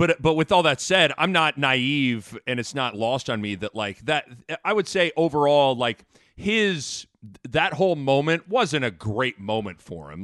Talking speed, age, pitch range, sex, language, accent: 195 wpm, 40-59, 130-190 Hz, male, English, American